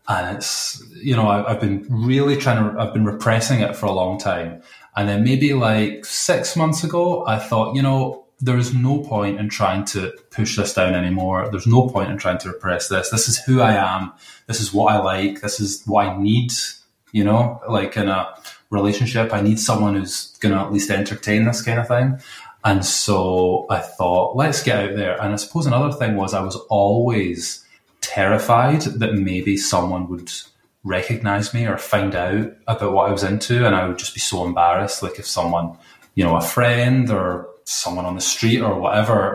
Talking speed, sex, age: 205 wpm, male, 20-39